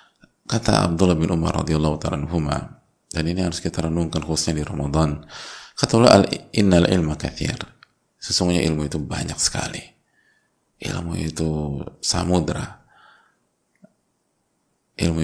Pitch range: 80-90 Hz